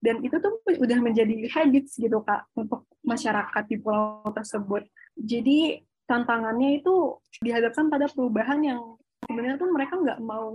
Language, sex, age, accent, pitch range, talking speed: Indonesian, female, 20-39, native, 215-260 Hz, 140 wpm